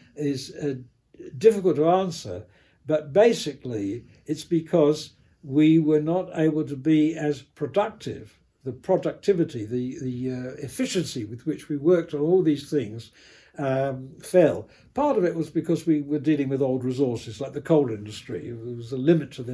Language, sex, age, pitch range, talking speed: English, male, 60-79, 130-165 Hz, 165 wpm